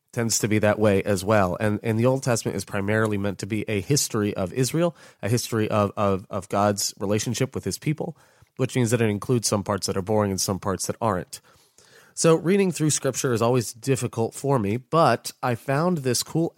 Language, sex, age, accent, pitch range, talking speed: English, male, 30-49, American, 105-135 Hz, 215 wpm